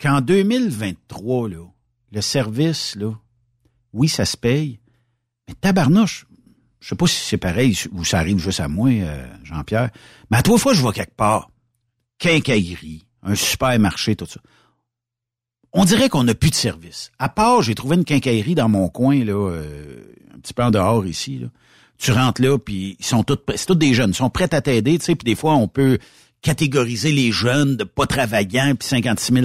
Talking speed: 190 wpm